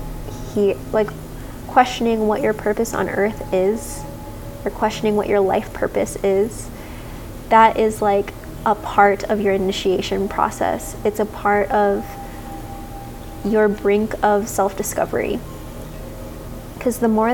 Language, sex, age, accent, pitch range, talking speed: English, female, 20-39, American, 195-220 Hz, 120 wpm